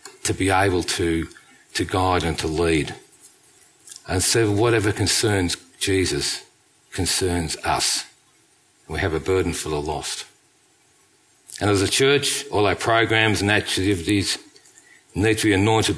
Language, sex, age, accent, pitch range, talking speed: English, male, 50-69, Australian, 95-135 Hz, 135 wpm